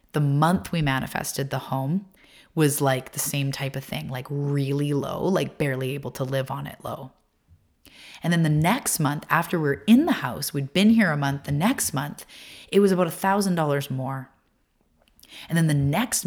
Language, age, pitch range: English, 30-49, 135-175 Hz